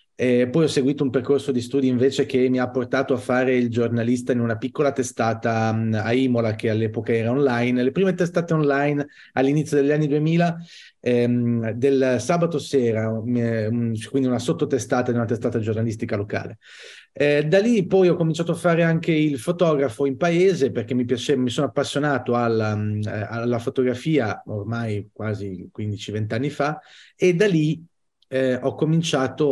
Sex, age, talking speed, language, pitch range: male, 30-49, 160 wpm, Italian, 120-145 Hz